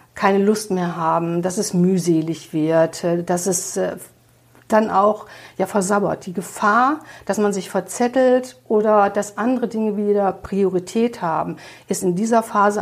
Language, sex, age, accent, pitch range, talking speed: German, female, 50-69, German, 185-225 Hz, 145 wpm